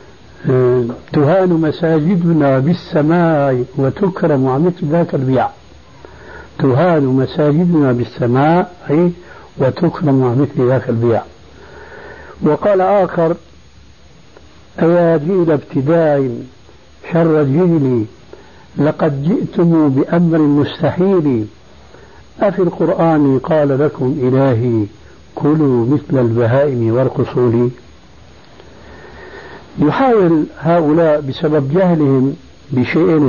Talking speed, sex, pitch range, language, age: 70 wpm, male, 125-165 Hz, Arabic, 60-79